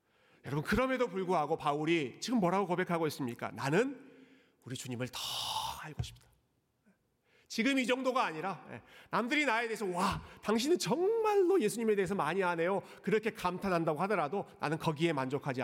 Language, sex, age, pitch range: Korean, male, 40-59, 145-220 Hz